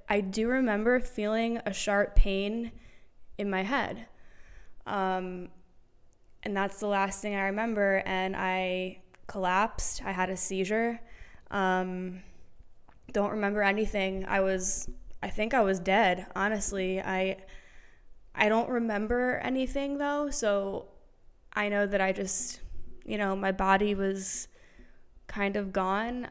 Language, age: English, 10-29